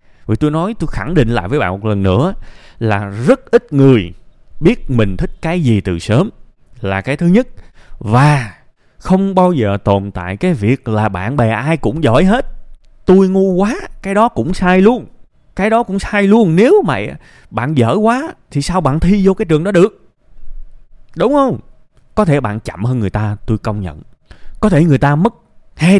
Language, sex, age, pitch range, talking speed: Vietnamese, male, 20-39, 115-185 Hz, 200 wpm